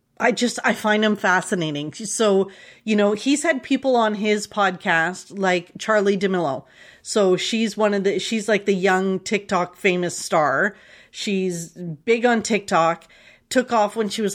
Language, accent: English, American